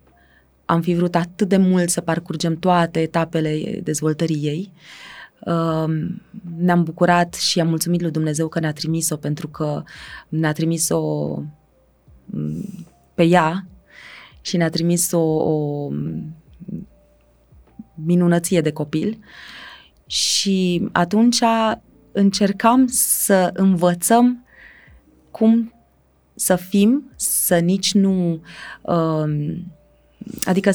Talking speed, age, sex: 90 wpm, 20-39, female